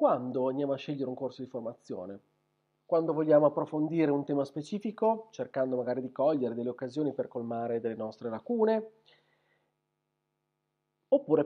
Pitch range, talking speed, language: 125-170 Hz, 135 wpm, Italian